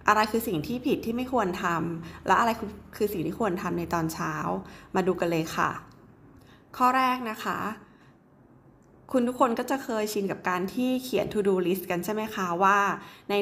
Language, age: Thai, 20-39